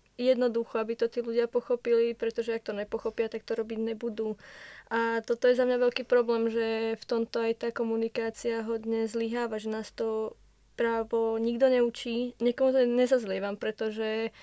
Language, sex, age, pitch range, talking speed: Czech, female, 20-39, 220-240 Hz, 160 wpm